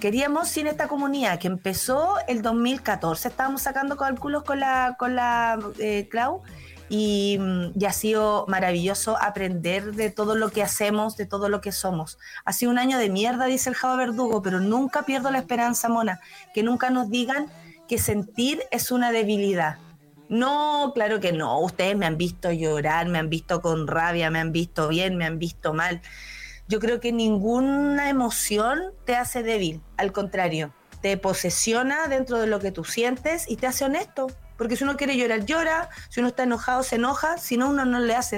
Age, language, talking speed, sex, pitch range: 30-49, Spanish, 190 wpm, female, 195-255 Hz